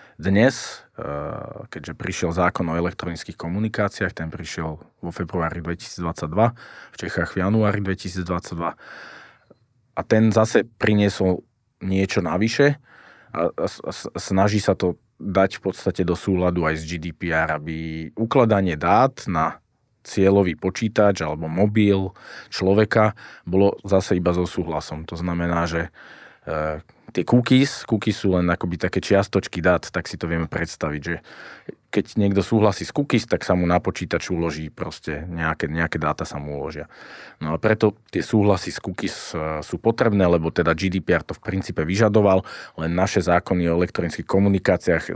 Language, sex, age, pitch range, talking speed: Slovak, male, 20-39, 85-100 Hz, 145 wpm